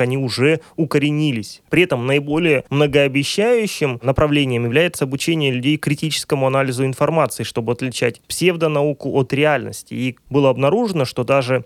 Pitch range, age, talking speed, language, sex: 125-155 Hz, 20-39, 125 wpm, Russian, male